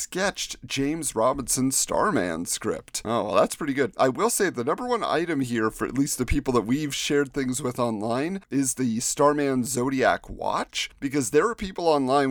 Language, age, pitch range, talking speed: English, 40-59, 120-180 Hz, 190 wpm